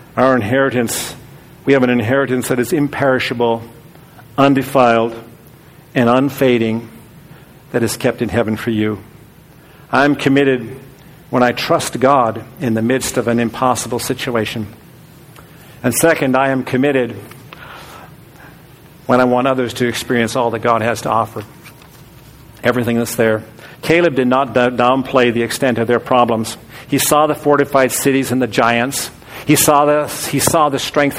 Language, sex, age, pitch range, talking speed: English, male, 50-69, 125-160 Hz, 150 wpm